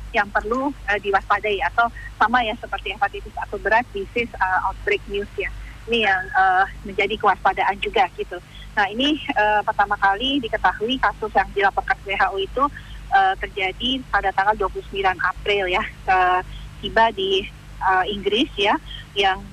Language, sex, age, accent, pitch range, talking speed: Indonesian, female, 30-49, native, 195-240 Hz, 145 wpm